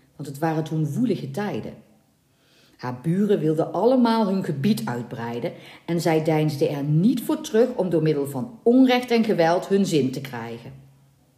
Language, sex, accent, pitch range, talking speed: Dutch, female, Dutch, 135-195 Hz, 165 wpm